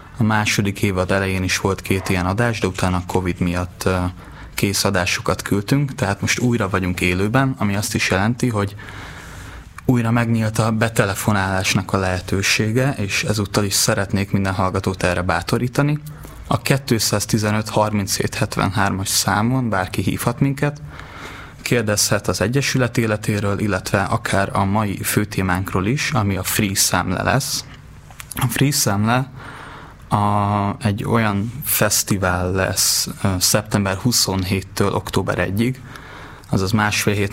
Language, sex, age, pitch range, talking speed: Hungarian, male, 20-39, 95-120 Hz, 125 wpm